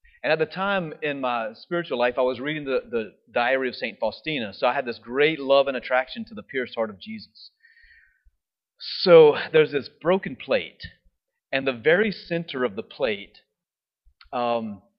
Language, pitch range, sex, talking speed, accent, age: English, 135-220 Hz, male, 175 wpm, American, 30-49